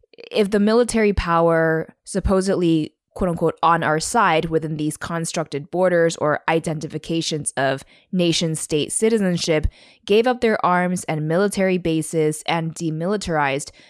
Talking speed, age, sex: 125 wpm, 20-39, female